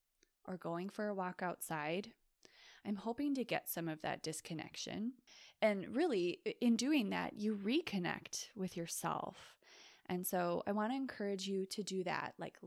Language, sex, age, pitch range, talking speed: English, female, 20-39, 180-230 Hz, 160 wpm